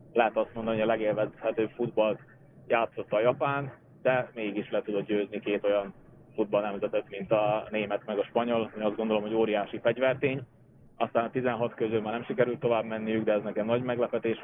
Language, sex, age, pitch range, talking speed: Hungarian, male, 20-39, 105-115 Hz, 185 wpm